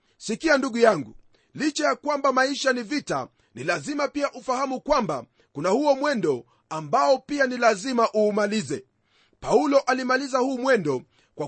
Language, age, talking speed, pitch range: Swahili, 40-59, 140 wpm, 230-275 Hz